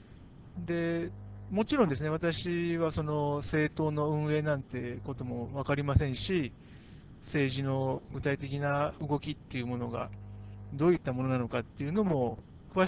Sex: male